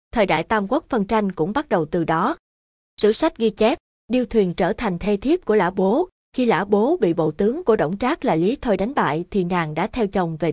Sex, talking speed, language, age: female, 250 wpm, Vietnamese, 20-39